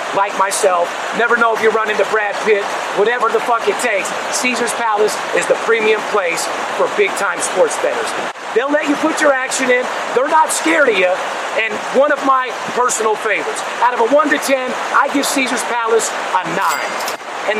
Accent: American